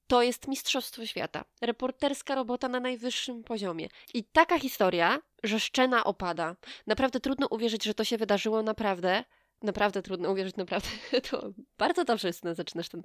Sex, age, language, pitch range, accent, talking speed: female, 20-39, Polish, 190-255 Hz, native, 150 wpm